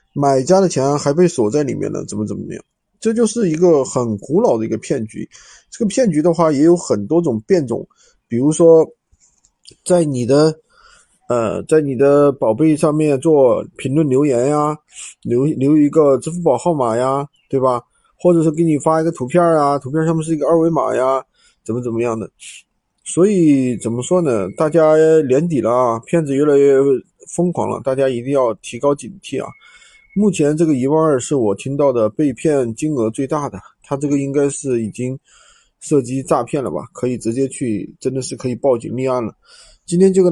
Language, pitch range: Chinese, 125-160 Hz